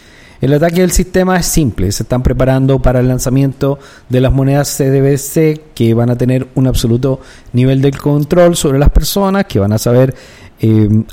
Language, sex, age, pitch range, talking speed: Spanish, male, 50-69, 125-160 Hz, 180 wpm